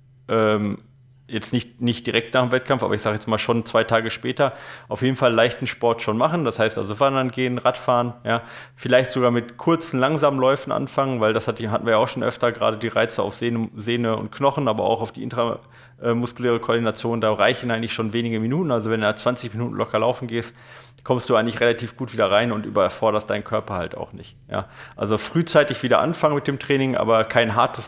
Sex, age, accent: male, 30-49, German